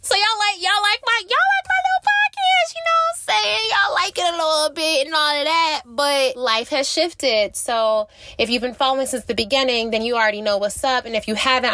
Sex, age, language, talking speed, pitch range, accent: female, 20-39, English, 245 wpm, 205-265 Hz, American